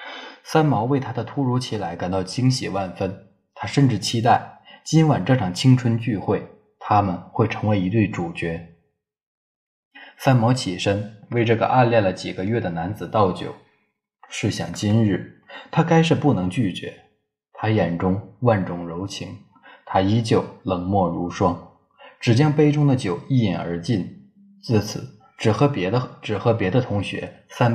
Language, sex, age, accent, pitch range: Chinese, male, 20-39, native, 95-125 Hz